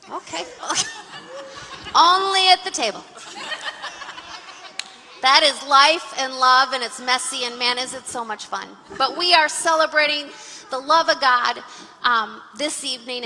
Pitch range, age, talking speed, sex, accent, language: 230-295 Hz, 40-59, 140 wpm, female, American, English